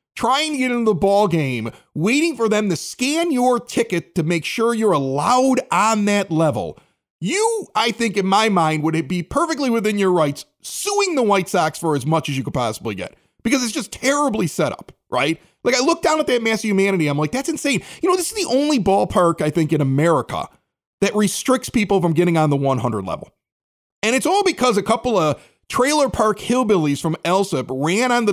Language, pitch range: English, 175-275 Hz